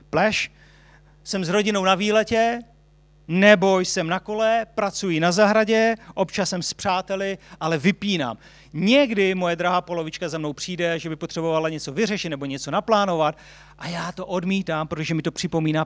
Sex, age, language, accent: male, 40-59, Czech, native